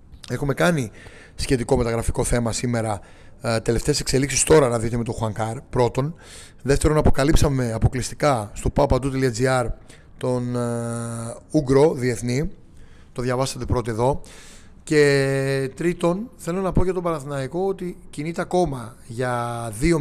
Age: 30-49